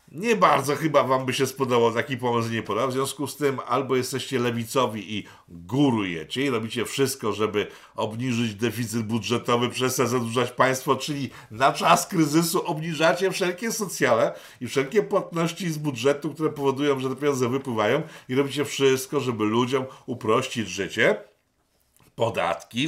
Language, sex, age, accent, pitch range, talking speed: Polish, male, 50-69, native, 120-160 Hz, 145 wpm